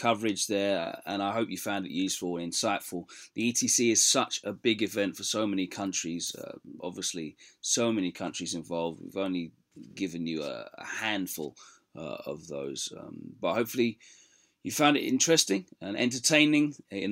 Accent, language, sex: British, English, male